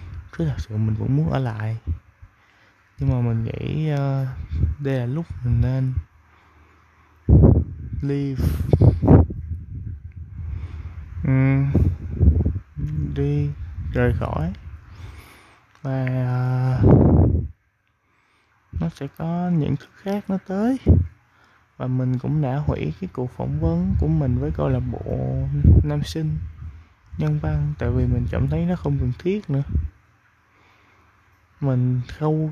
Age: 20-39